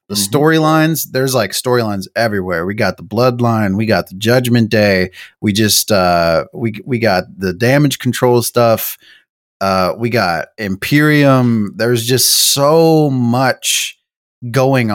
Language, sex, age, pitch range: English, male, 30-49, 100-135 Hz